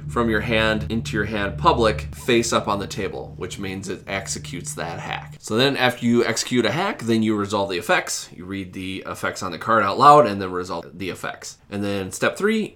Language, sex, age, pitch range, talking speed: English, male, 20-39, 95-115 Hz, 225 wpm